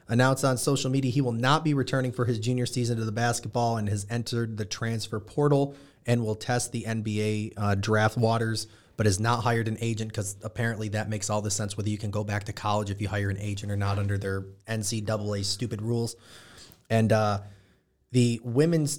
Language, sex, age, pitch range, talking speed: English, male, 30-49, 105-125 Hz, 210 wpm